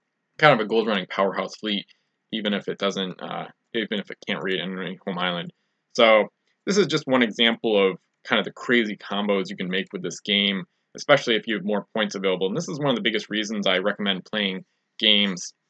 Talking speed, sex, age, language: 220 wpm, male, 20-39, English